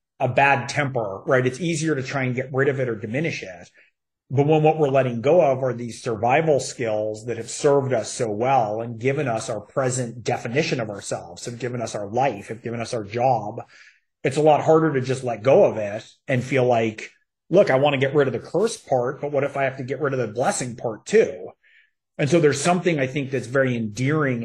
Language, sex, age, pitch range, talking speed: English, male, 30-49, 120-145 Hz, 235 wpm